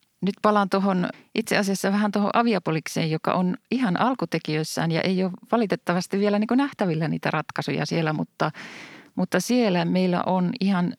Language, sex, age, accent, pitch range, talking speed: Finnish, female, 40-59, native, 155-190 Hz, 160 wpm